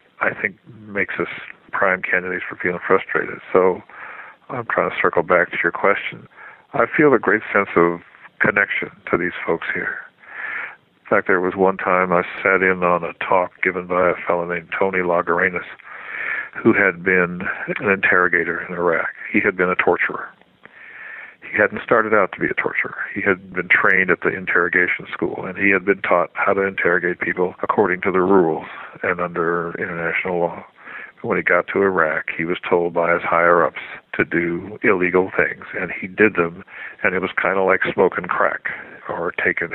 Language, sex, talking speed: English, male, 185 wpm